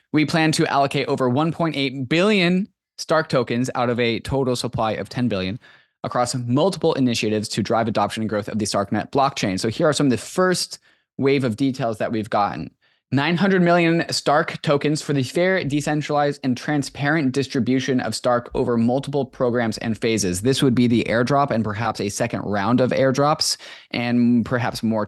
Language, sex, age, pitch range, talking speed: English, male, 20-39, 110-145 Hz, 180 wpm